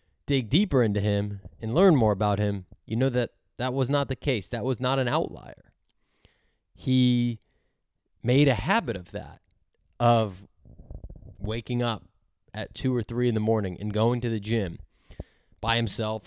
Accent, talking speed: American, 165 wpm